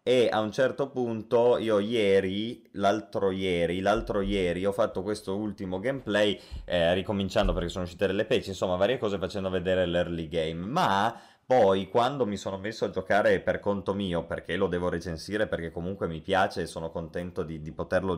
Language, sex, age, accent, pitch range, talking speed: Italian, male, 20-39, native, 90-120 Hz, 180 wpm